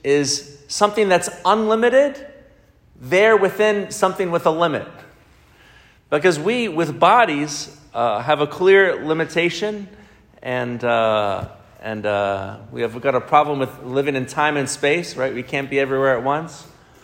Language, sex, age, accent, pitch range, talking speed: English, male, 40-59, American, 120-150 Hz, 140 wpm